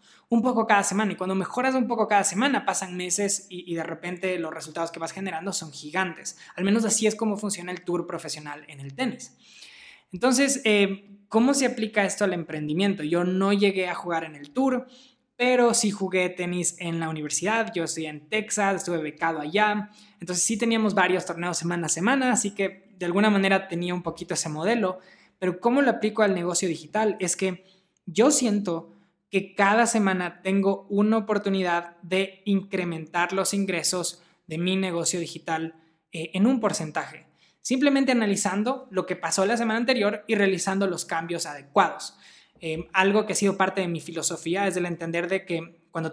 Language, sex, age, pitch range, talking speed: Spanish, male, 20-39, 170-210 Hz, 185 wpm